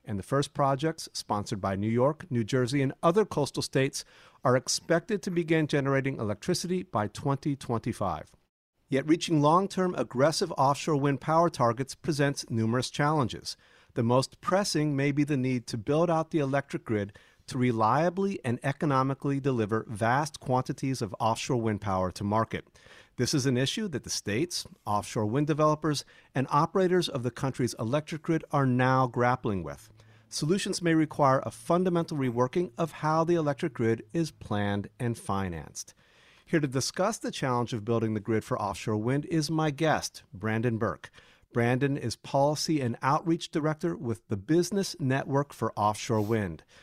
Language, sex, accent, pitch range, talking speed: English, male, American, 115-155 Hz, 160 wpm